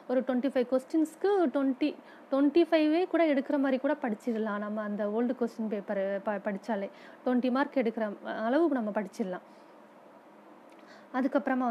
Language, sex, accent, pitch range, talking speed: Tamil, female, native, 235-300 Hz, 130 wpm